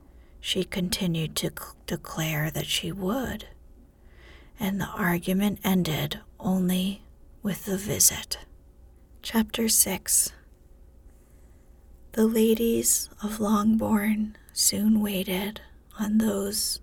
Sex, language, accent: female, English, American